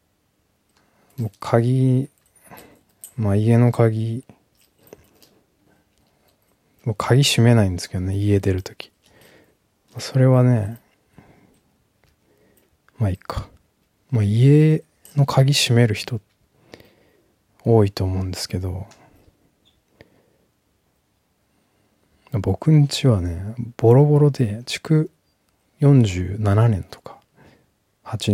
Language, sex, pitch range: Japanese, male, 95-125 Hz